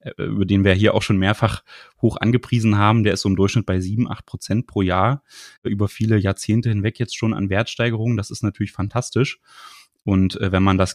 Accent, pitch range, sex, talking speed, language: German, 100-120 Hz, male, 195 wpm, German